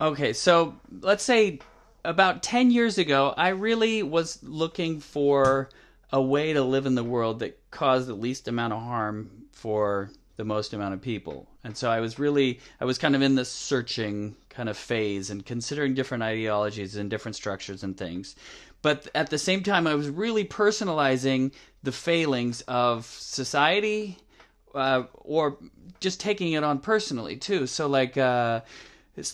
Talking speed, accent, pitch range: 170 wpm, American, 120-160 Hz